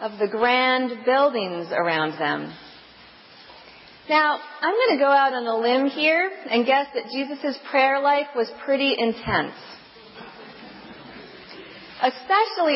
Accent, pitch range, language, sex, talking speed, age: American, 210-280 Hz, English, female, 120 wpm, 40-59